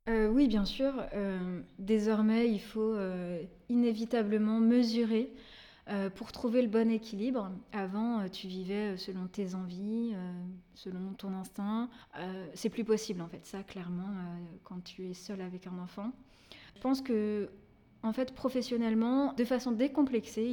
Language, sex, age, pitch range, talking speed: French, female, 20-39, 200-240 Hz, 155 wpm